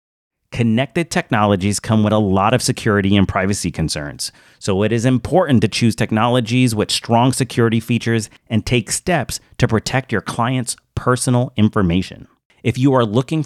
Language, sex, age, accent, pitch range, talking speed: English, male, 40-59, American, 100-130 Hz, 155 wpm